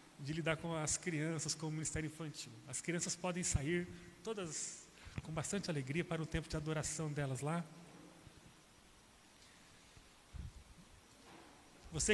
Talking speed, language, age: 125 wpm, Portuguese, 40-59